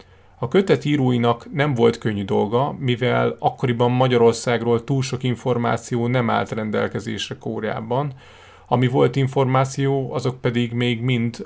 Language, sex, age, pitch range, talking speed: Hungarian, male, 30-49, 110-125 Hz, 125 wpm